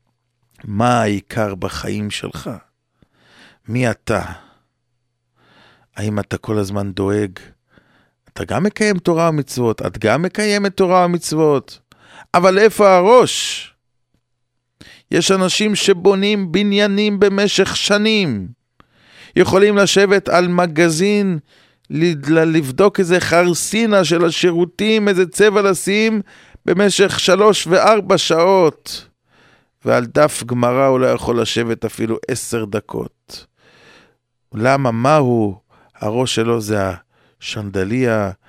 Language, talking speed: English, 100 wpm